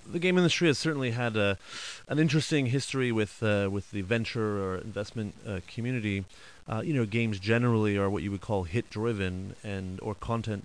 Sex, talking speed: male, 190 wpm